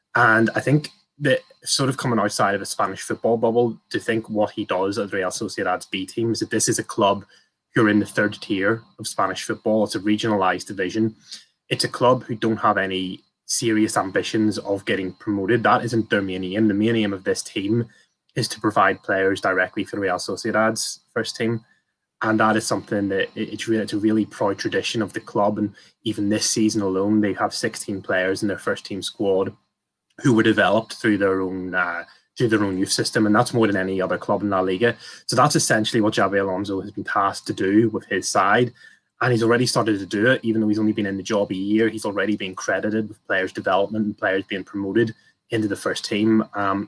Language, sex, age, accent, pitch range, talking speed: English, male, 20-39, British, 100-115 Hz, 215 wpm